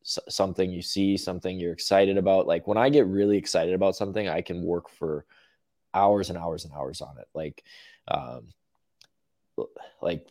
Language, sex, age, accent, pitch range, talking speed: English, male, 20-39, American, 85-100 Hz, 170 wpm